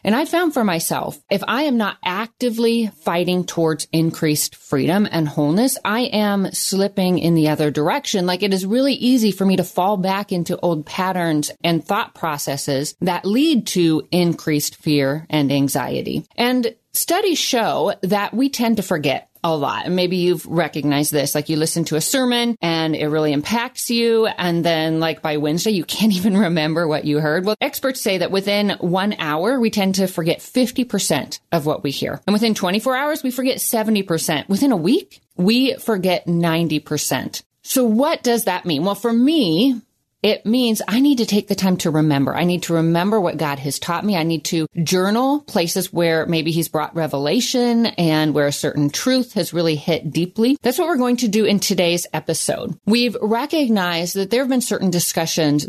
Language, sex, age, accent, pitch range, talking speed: English, female, 30-49, American, 165-230 Hz, 190 wpm